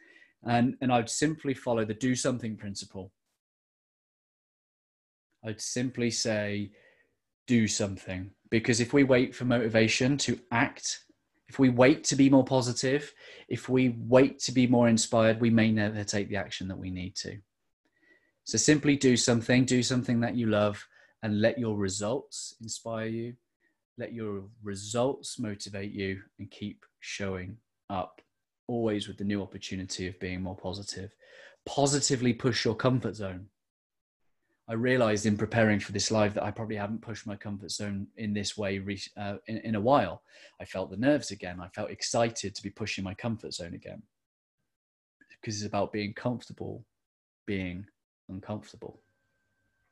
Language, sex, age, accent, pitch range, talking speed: English, male, 20-39, British, 100-125 Hz, 155 wpm